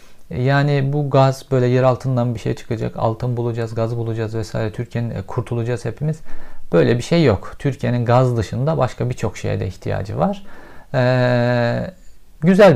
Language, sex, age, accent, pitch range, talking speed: Turkish, male, 50-69, native, 110-130 Hz, 150 wpm